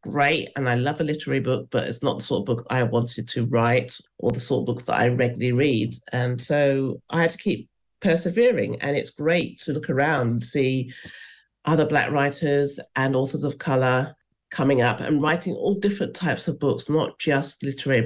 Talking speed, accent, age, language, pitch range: 205 wpm, British, 50-69, English, 125-155 Hz